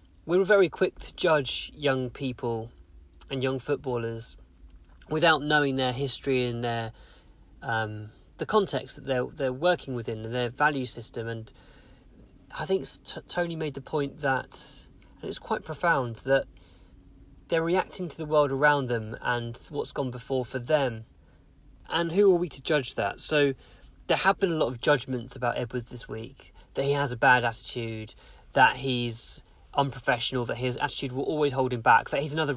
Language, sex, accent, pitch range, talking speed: English, male, British, 115-145 Hz, 175 wpm